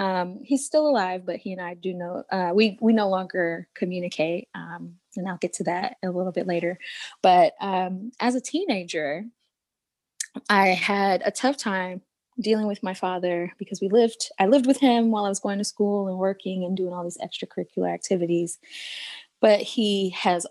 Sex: female